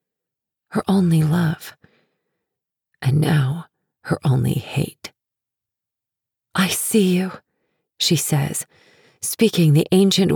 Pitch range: 130-170 Hz